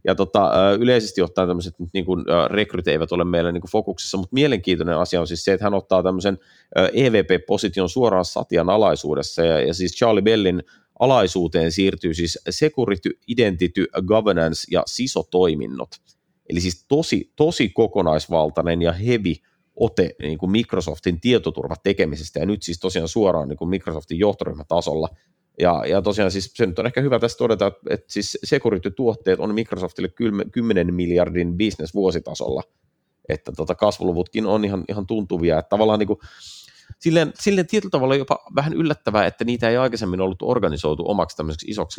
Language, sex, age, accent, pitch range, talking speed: Finnish, male, 30-49, native, 85-110 Hz, 150 wpm